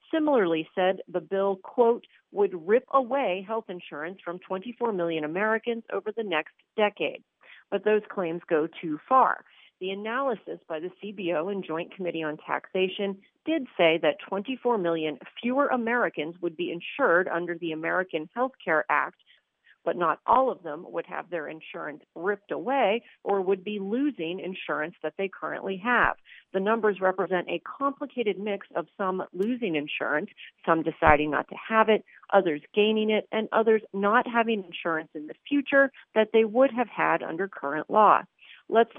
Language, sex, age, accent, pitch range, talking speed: English, female, 40-59, American, 170-235 Hz, 165 wpm